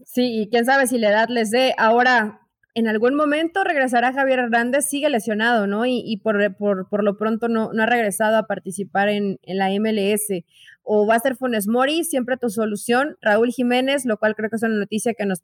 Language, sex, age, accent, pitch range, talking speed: Spanish, female, 20-39, Mexican, 210-255 Hz, 220 wpm